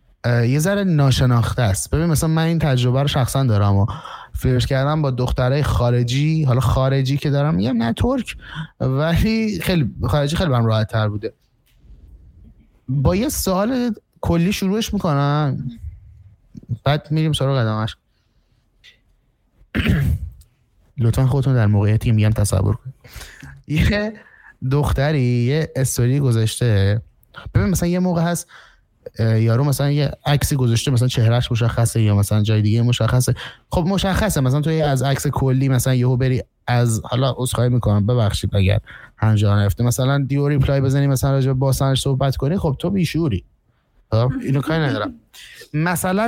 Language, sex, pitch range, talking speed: Persian, male, 115-155 Hz, 140 wpm